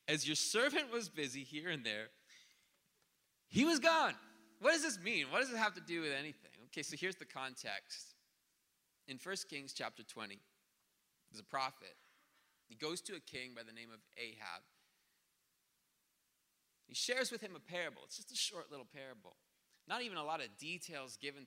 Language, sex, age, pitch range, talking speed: English, male, 30-49, 130-205 Hz, 180 wpm